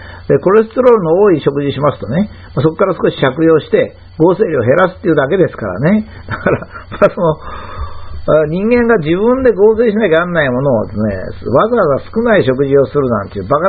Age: 50-69